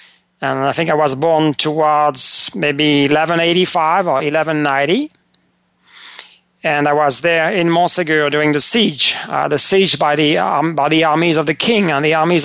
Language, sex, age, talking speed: English, male, 40-59, 170 wpm